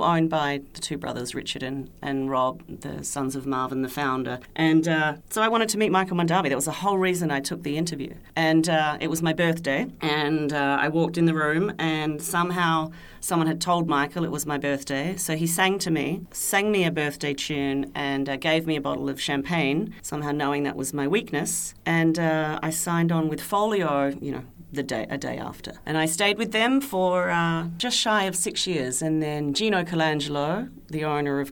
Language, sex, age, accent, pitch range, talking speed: English, female, 40-59, Australian, 140-170 Hz, 215 wpm